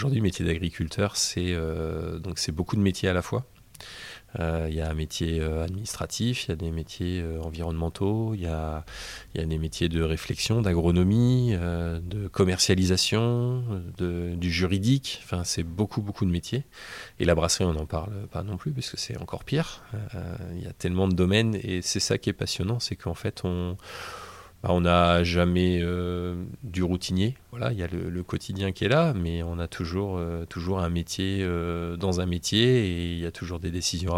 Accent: French